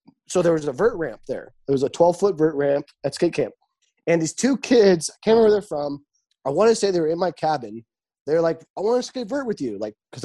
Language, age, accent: English, 20-39, American